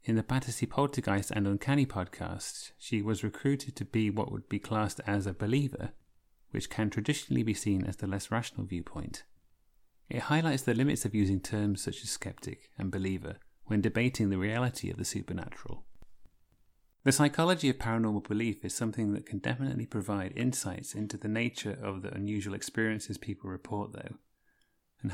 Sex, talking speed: male, 170 wpm